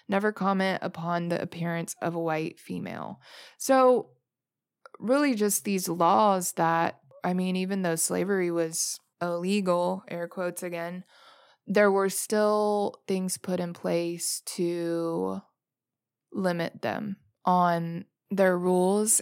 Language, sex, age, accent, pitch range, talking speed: English, female, 20-39, American, 175-205 Hz, 120 wpm